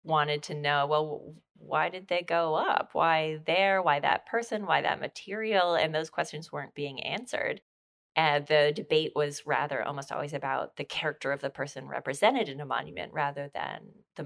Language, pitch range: English, 145-175 Hz